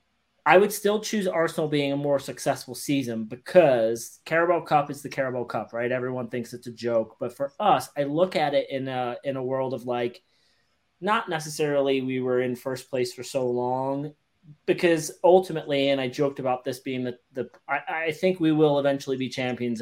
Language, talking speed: English, 195 wpm